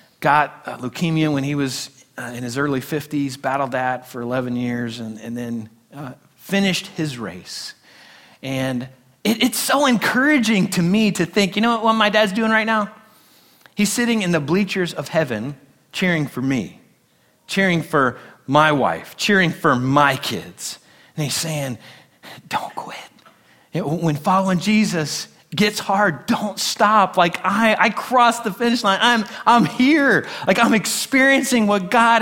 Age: 40-59